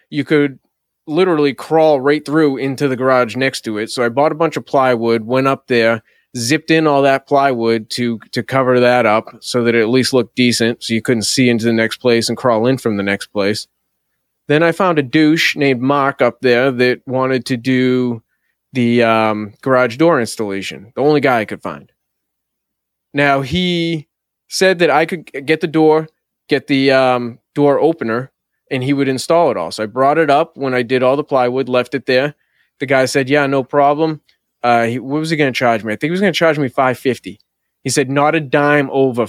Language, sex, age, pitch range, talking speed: English, male, 20-39, 120-150 Hz, 215 wpm